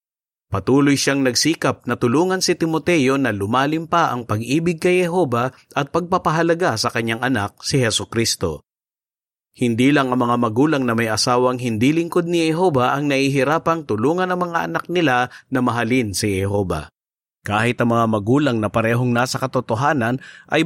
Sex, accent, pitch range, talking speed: male, native, 115-155 Hz, 155 wpm